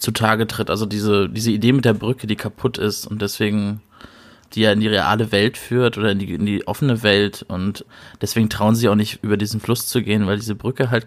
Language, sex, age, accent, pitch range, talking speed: German, male, 20-39, German, 110-125 Hz, 235 wpm